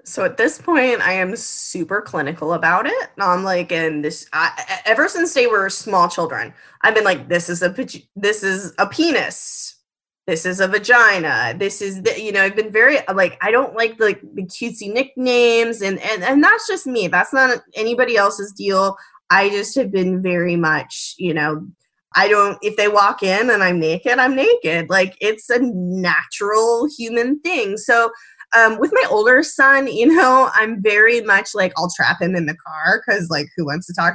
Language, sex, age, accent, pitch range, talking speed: English, female, 20-39, American, 180-250 Hz, 200 wpm